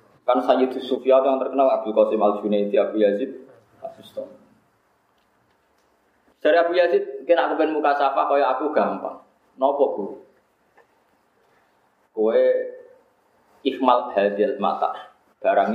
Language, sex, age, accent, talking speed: Indonesian, male, 20-39, native, 125 wpm